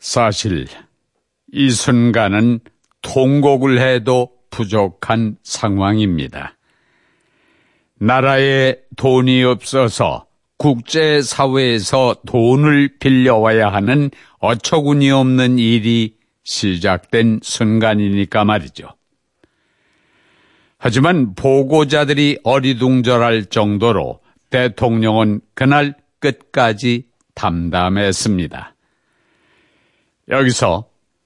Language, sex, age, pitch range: Korean, male, 60-79, 110-135 Hz